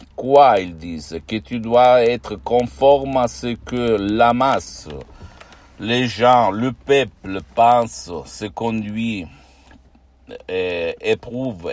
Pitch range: 95-120 Hz